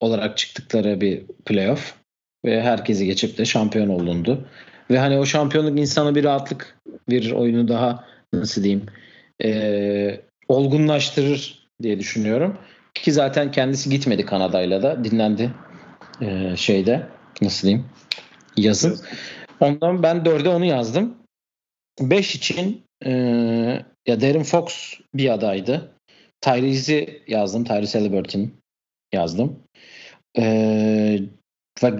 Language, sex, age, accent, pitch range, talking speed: Turkish, male, 40-59, native, 105-135 Hz, 105 wpm